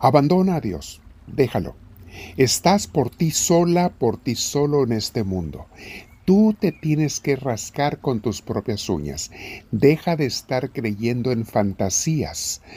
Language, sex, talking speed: Spanish, male, 135 wpm